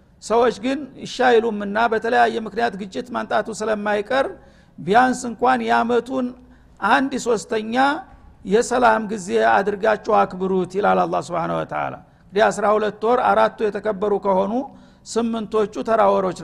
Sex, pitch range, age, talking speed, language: male, 210-240 Hz, 50-69, 100 wpm, Amharic